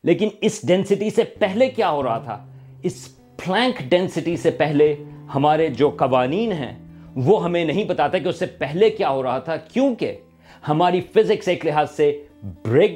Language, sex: Urdu, male